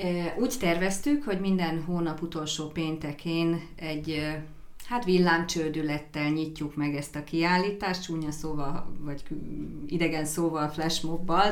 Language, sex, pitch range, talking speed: Hungarian, female, 150-175 Hz, 110 wpm